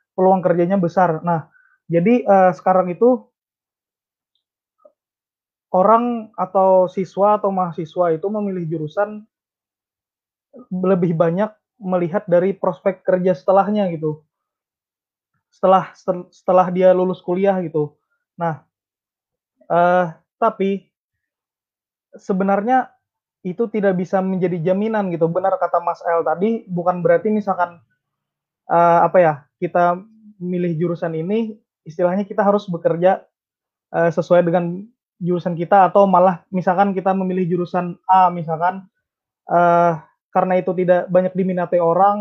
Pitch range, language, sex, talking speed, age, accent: 170-195 Hz, Indonesian, male, 110 wpm, 20-39, native